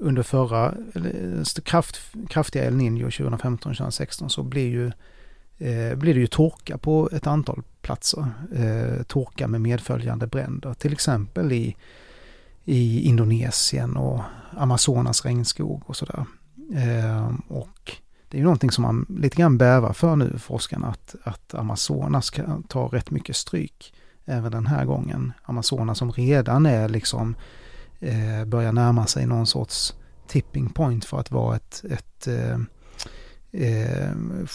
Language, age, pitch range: Swedish, 30-49, 115-145 Hz